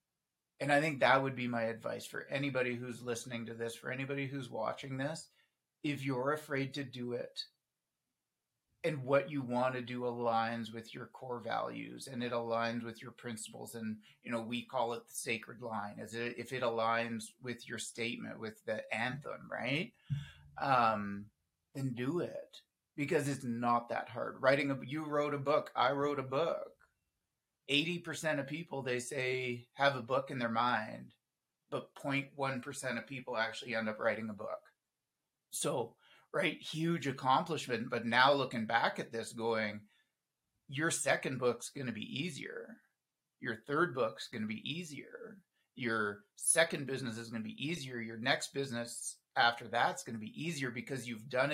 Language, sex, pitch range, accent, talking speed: English, male, 115-140 Hz, American, 165 wpm